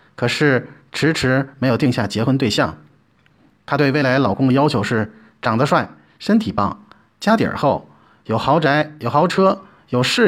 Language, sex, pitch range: Chinese, male, 115-165 Hz